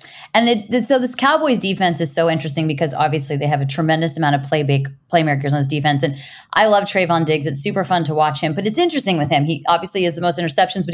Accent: American